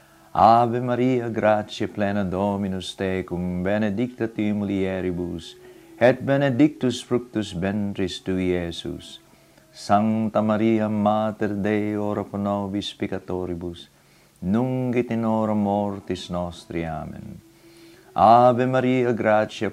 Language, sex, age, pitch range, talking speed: English, male, 50-69, 95-115 Hz, 95 wpm